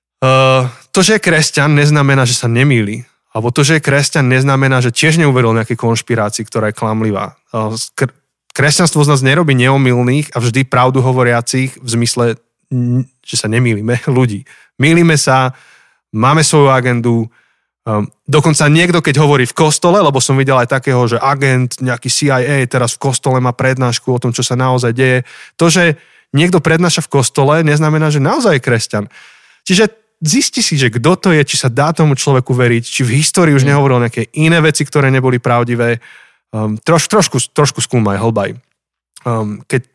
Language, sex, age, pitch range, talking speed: Slovak, male, 20-39, 120-150 Hz, 165 wpm